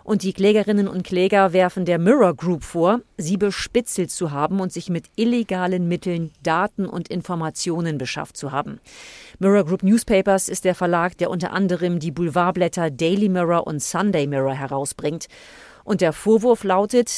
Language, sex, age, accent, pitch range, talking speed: German, female, 40-59, German, 165-205 Hz, 160 wpm